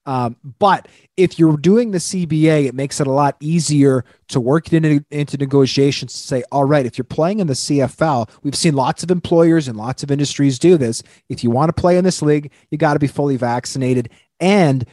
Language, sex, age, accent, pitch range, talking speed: English, male, 30-49, American, 130-150 Hz, 215 wpm